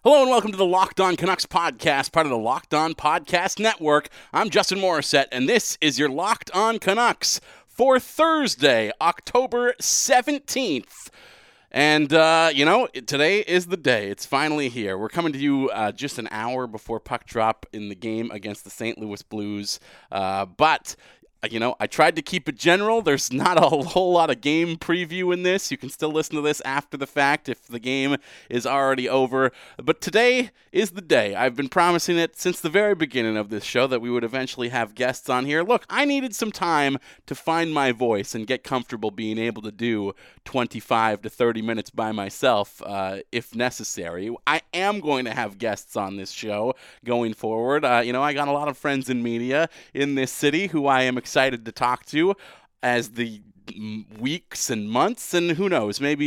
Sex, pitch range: male, 115-170 Hz